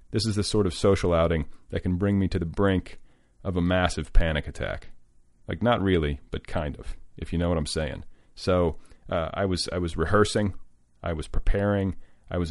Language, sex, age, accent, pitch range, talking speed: English, male, 40-59, American, 85-95 Hz, 205 wpm